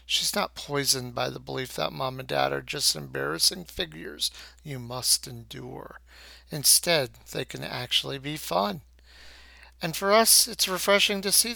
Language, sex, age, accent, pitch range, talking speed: English, male, 50-69, American, 125-150 Hz, 155 wpm